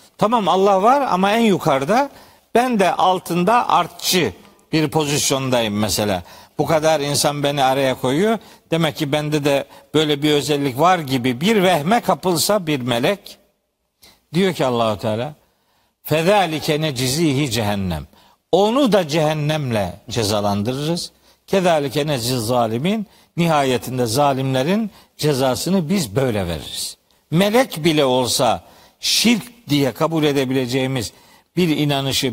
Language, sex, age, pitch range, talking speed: Turkish, male, 60-79, 140-200 Hz, 115 wpm